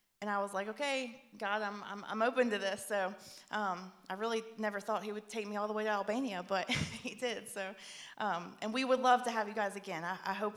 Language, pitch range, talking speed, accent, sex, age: English, 195-235 Hz, 250 wpm, American, female, 20-39